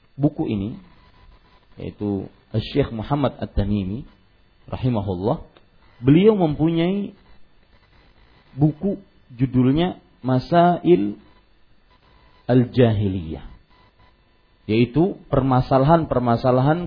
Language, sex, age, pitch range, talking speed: Malay, male, 40-59, 105-155 Hz, 55 wpm